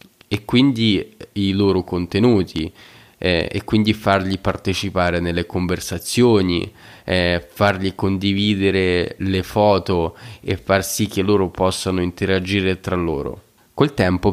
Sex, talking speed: male, 115 wpm